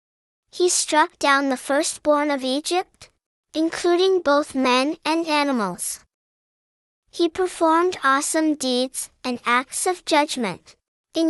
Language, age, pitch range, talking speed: English, 10-29, 270-330 Hz, 110 wpm